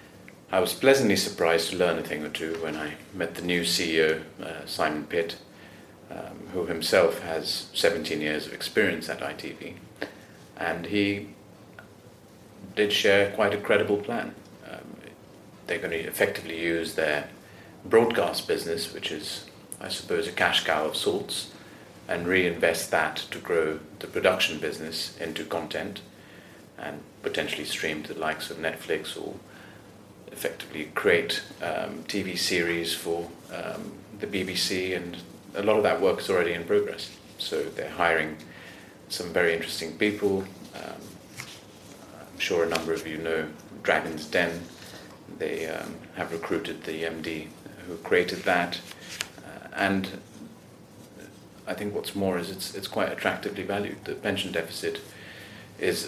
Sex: male